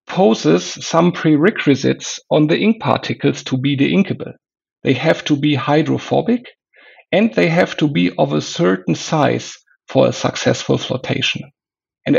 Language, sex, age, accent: English, male, 50-69, German